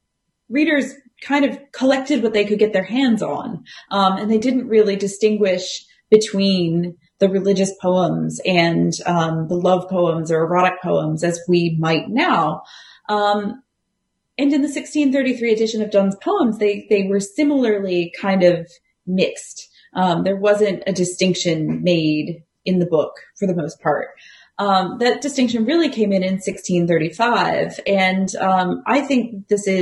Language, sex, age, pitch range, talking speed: English, female, 30-49, 175-220 Hz, 140 wpm